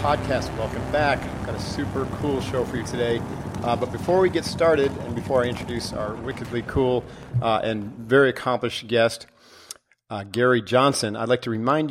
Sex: male